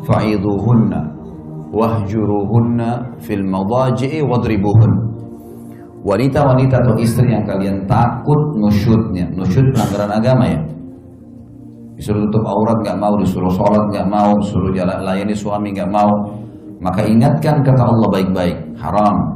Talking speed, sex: 110 wpm, male